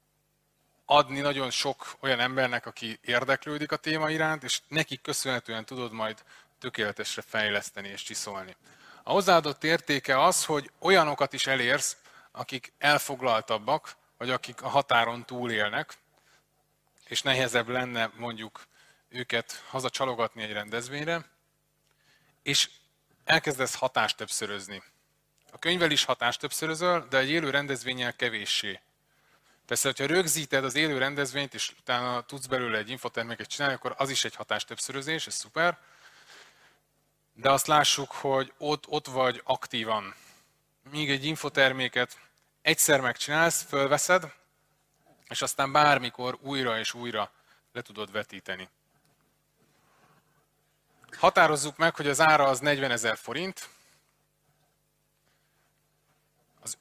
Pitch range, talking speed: 120-150 Hz, 115 wpm